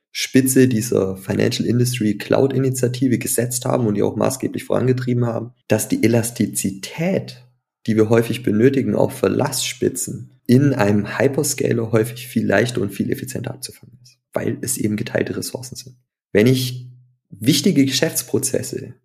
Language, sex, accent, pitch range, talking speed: German, male, German, 110-130 Hz, 140 wpm